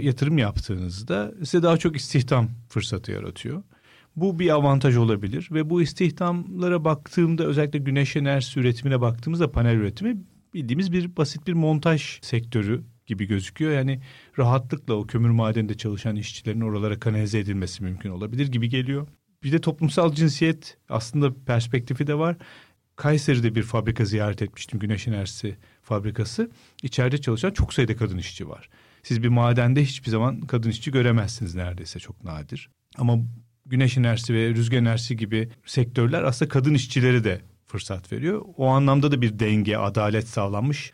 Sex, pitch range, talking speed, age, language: male, 110-140 Hz, 145 wpm, 40-59, Turkish